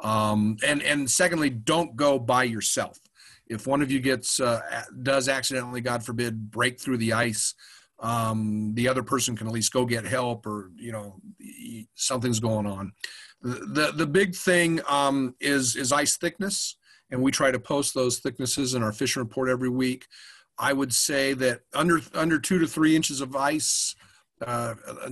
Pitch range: 120-155 Hz